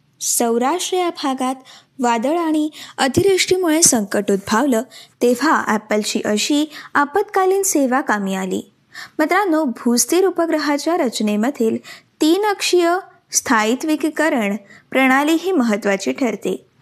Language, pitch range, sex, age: Marathi, 225-320 Hz, female, 20-39